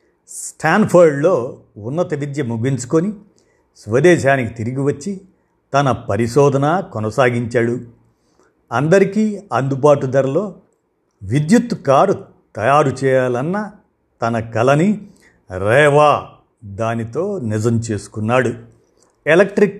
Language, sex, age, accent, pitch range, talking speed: Telugu, male, 50-69, native, 120-160 Hz, 75 wpm